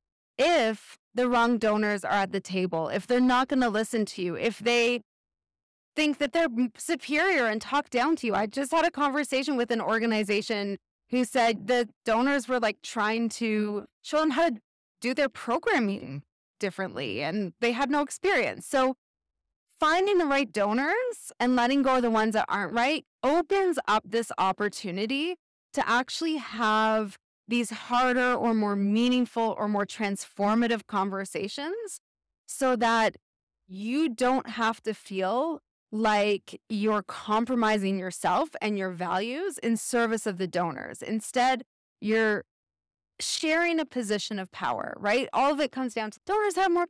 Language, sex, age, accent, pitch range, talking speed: English, female, 20-39, American, 215-275 Hz, 155 wpm